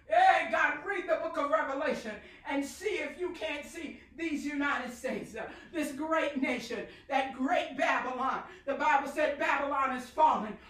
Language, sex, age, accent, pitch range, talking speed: English, female, 50-69, American, 275-365 Hz, 155 wpm